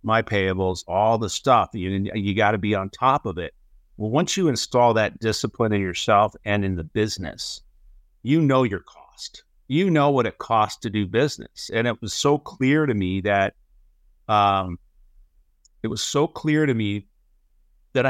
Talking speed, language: 175 wpm, English